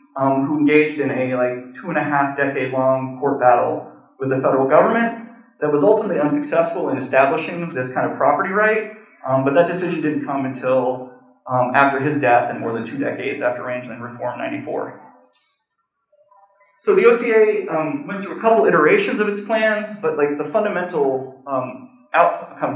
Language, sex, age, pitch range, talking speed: English, male, 20-39, 135-210 Hz, 180 wpm